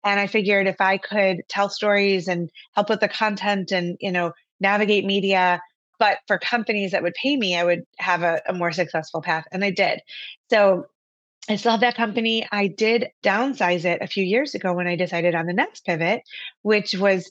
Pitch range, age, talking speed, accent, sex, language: 180-215 Hz, 20-39, 205 wpm, American, female, English